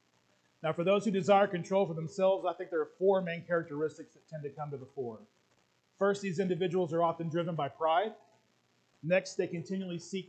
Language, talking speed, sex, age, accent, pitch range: English, 200 wpm, male, 40-59, American, 145-190 Hz